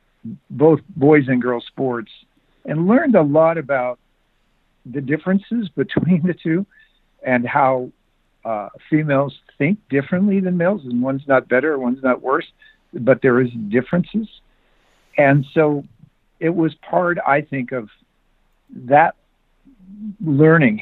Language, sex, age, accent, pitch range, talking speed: English, male, 60-79, American, 120-160 Hz, 125 wpm